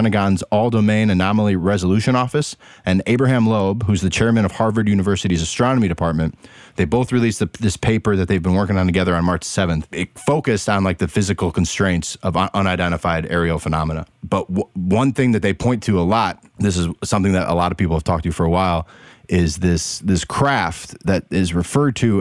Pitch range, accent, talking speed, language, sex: 90-115 Hz, American, 195 wpm, English, male